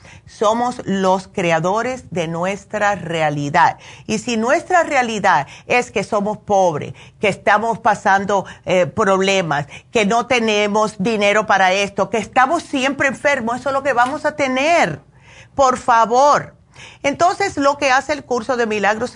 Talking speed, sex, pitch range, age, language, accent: 145 wpm, female, 180-235 Hz, 50-69, Spanish, American